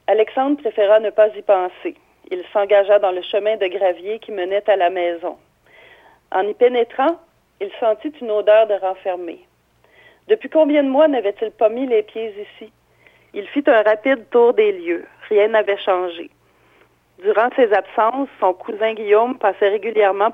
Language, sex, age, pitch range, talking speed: French, female, 40-59, 195-270 Hz, 160 wpm